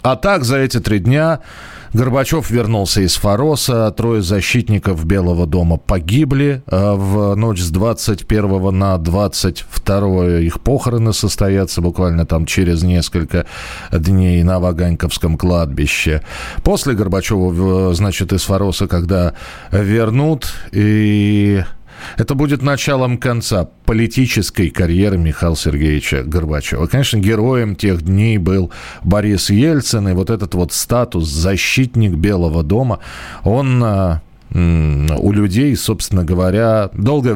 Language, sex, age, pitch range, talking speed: Russian, male, 40-59, 85-110 Hz, 110 wpm